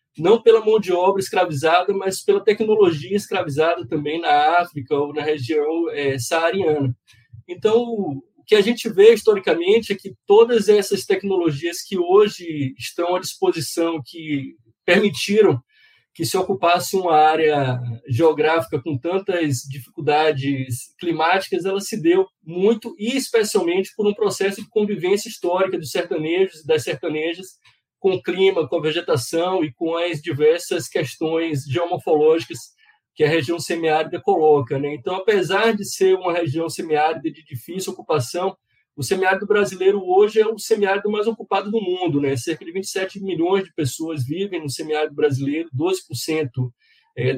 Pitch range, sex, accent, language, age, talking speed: 155-200 Hz, male, Brazilian, Portuguese, 20-39, 145 wpm